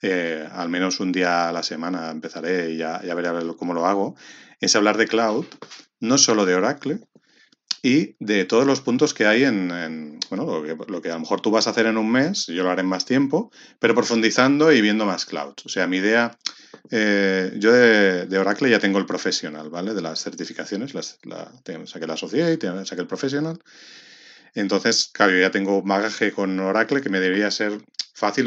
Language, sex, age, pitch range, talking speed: Spanish, male, 30-49, 90-115 Hz, 215 wpm